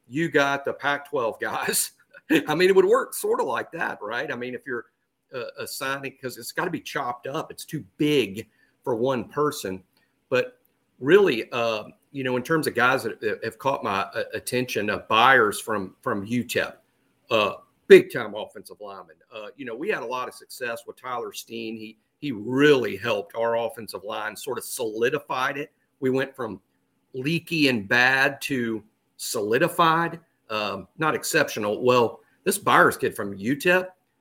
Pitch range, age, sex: 120-185 Hz, 50-69, male